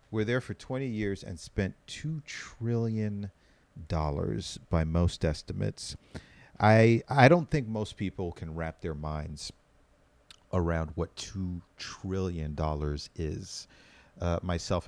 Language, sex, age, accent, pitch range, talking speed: English, male, 40-59, American, 85-110 Hz, 115 wpm